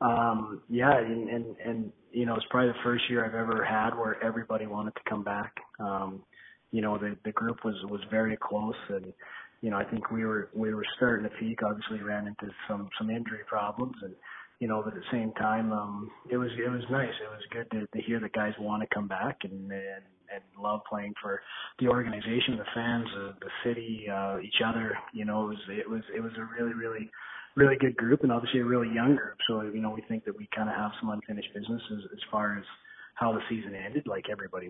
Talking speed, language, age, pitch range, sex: 235 wpm, English, 30-49, 105-120 Hz, male